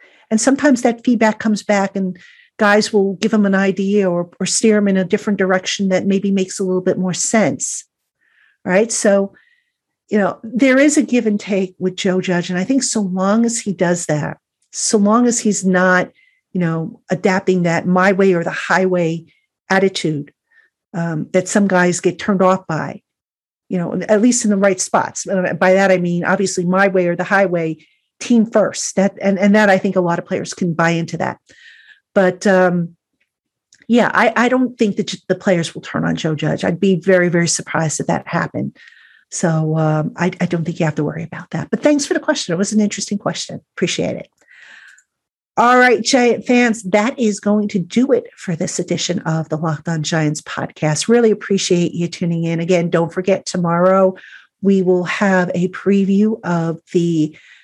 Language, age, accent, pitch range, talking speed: English, 50-69, American, 175-215 Hz, 195 wpm